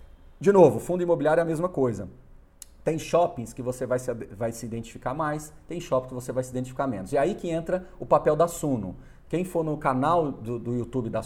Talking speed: 220 wpm